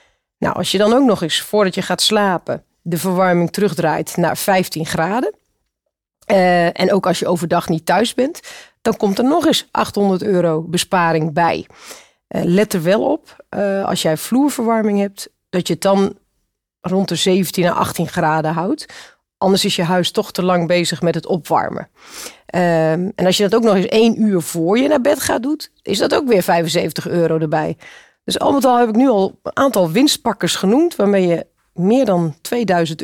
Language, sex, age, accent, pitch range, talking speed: Dutch, female, 40-59, Dutch, 175-220 Hz, 195 wpm